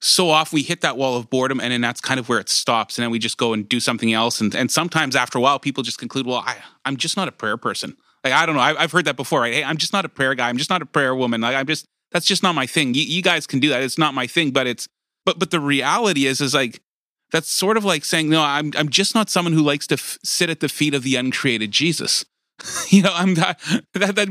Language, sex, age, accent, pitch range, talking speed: English, male, 30-49, American, 135-175 Hz, 300 wpm